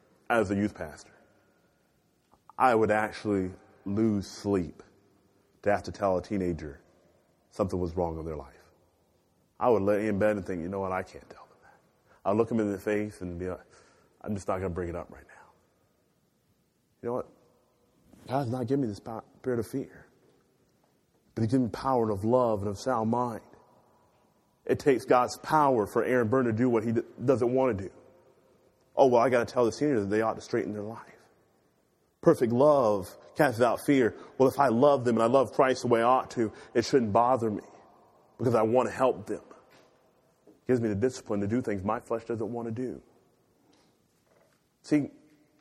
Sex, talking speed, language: male, 195 wpm, English